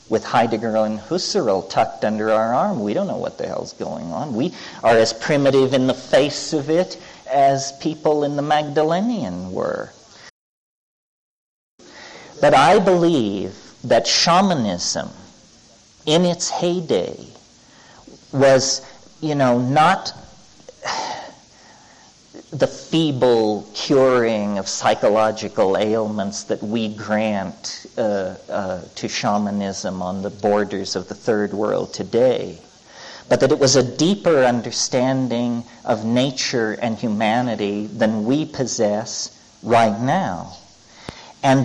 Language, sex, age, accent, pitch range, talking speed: English, male, 50-69, American, 115-155 Hz, 115 wpm